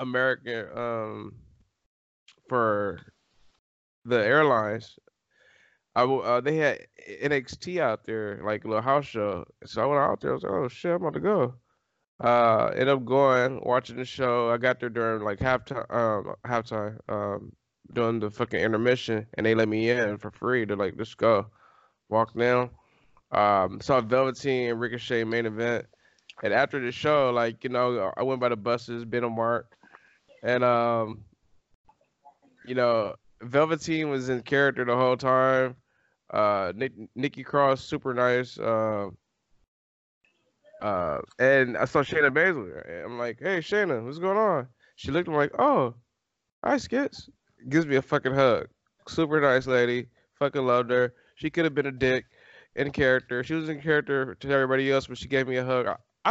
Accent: American